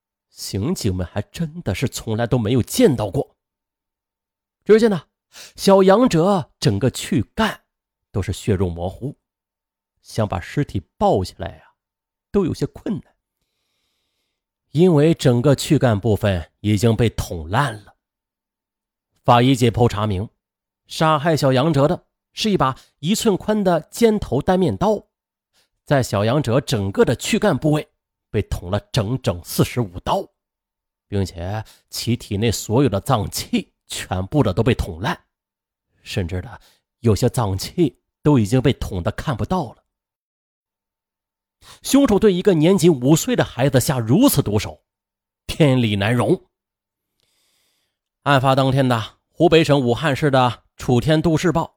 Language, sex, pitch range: Chinese, male, 100-155 Hz